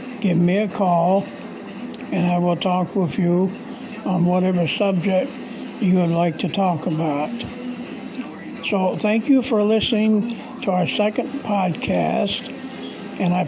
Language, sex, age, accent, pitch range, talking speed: English, male, 60-79, American, 180-220 Hz, 135 wpm